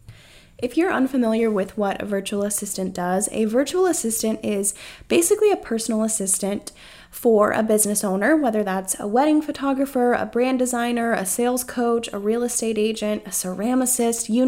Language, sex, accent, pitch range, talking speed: English, female, American, 210-255 Hz, 160 wpm